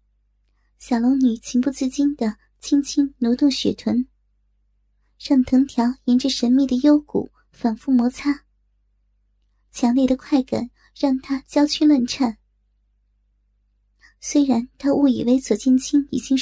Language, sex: Chinese, male